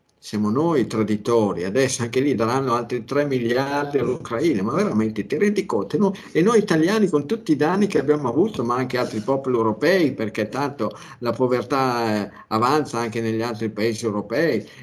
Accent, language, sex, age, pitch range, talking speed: native, Italian, male, 50-69, 115-140 Hz, 165 wpm